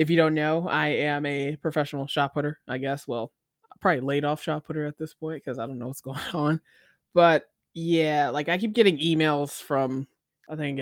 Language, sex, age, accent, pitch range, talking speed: English, male, 20-39, American, 145-170 Hz, 215 wpm